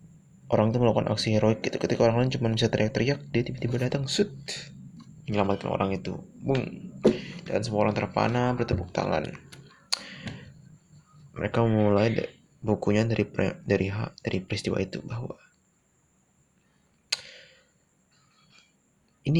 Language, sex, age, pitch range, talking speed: Indonesian, male, 20-39, 105-130 Hz, 110 wpm